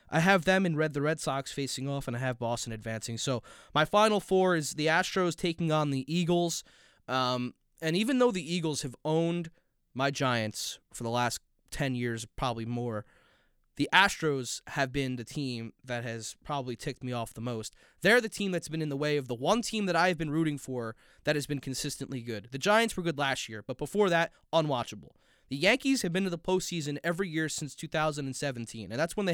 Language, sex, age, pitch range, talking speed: English, male, 20-39, 130-180 Hz, 215 wpm